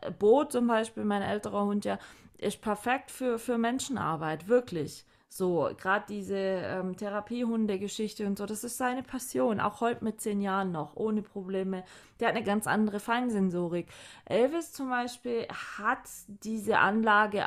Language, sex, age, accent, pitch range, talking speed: German, female, 20-39, German, 195-230 Hz, 150 wpm